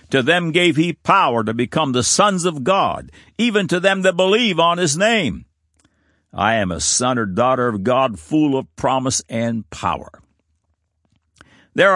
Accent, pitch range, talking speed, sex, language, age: American, 100-150 Hz, 165 wpm, male, English, 60-79